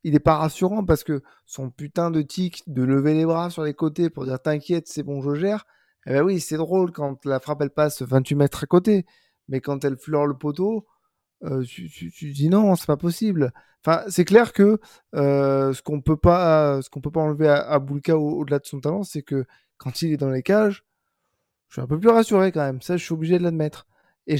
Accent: French